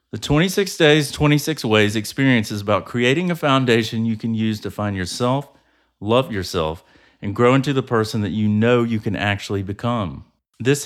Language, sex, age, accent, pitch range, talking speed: English, male, 40-59, American, 105-140 Hz, 175 wpm